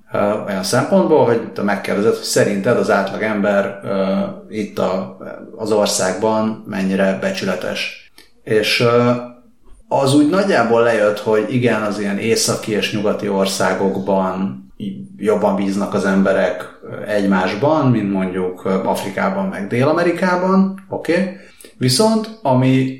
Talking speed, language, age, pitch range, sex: 115 wpm, Hungarian, 30-49, 100-130 Hz, male